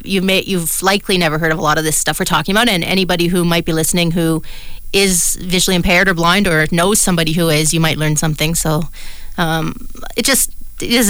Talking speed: 220 wpm